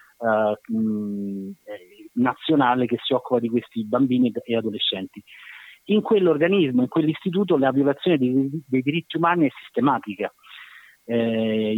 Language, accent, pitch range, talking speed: Italian, native, 115-145 Hz, 115 wpm